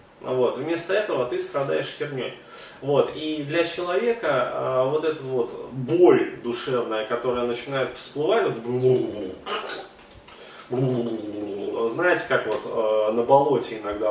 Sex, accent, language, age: male, native, Russian, 20-39